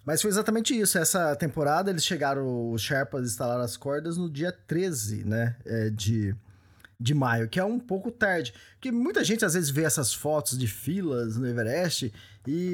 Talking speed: 185 wpm